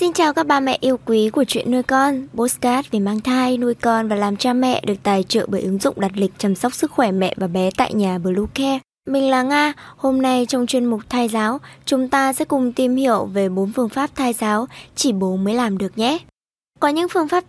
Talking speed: 250 wpm